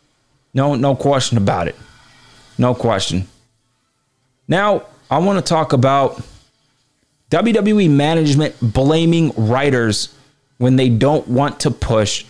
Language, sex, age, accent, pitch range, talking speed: English, male, 20-39, American, 115-140 Hz, 110 wpm